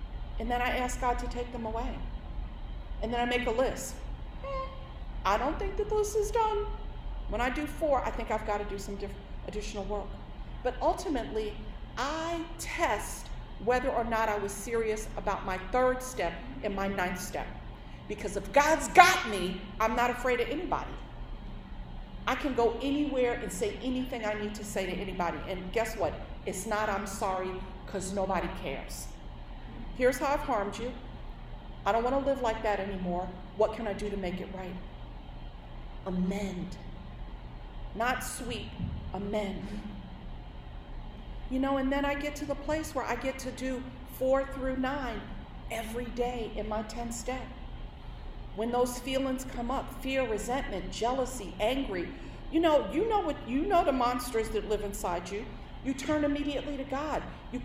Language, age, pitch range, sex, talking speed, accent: English, 40-59, 195-265 Hz, female, 170 wpm, American